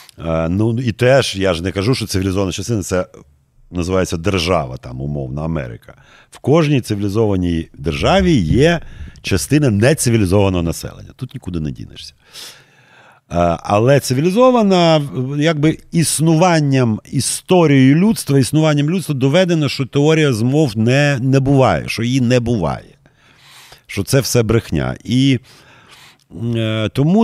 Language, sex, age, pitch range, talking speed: Ukrainian, male, 50-69, 95-145 Hz, 115 wpm